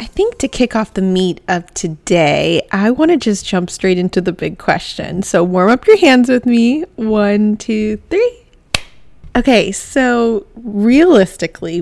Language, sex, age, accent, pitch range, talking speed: English, female, 30-49, American, 180-235 Hz, 160 wpm